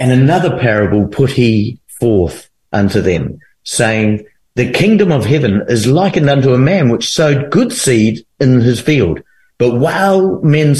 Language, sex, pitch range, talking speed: English, male, 115-145 Hz, 155 wpm